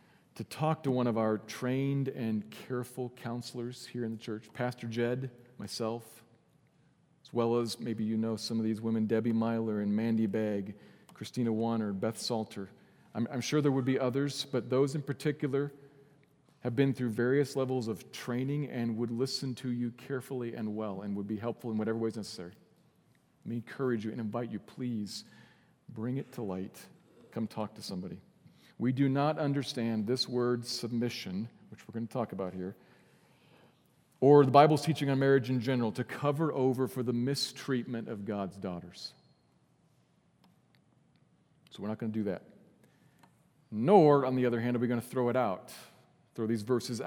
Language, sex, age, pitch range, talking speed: English, male, 40-59, 110-135 Hz, 180 wpm